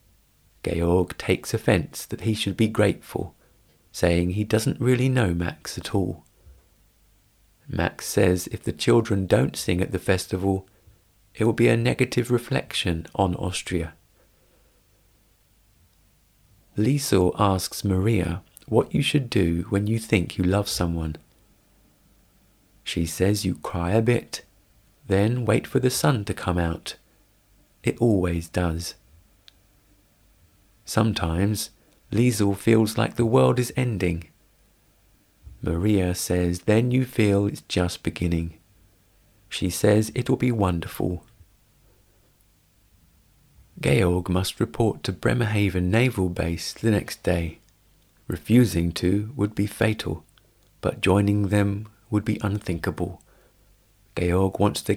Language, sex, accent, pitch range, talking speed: English, male, British, 90-110 Hz, 120 wpm